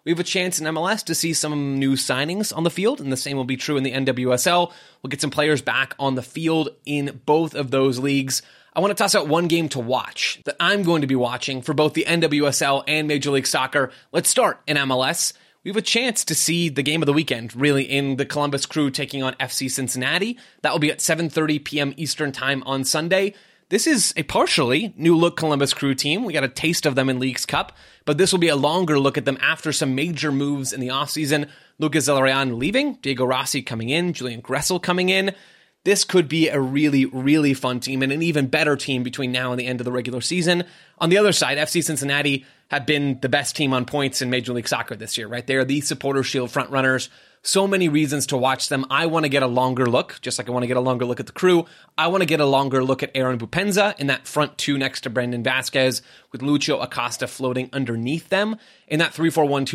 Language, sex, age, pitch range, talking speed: English, male, 20-39, 130-160 Hz, 240 wpm